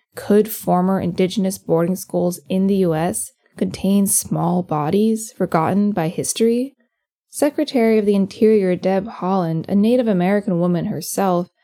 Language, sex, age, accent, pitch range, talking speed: English, female, 10-29, American, 175-225 Hz, 130 wpm